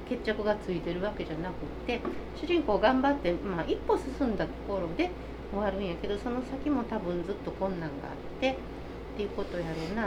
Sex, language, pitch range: female, Japanese, 180-280 Hz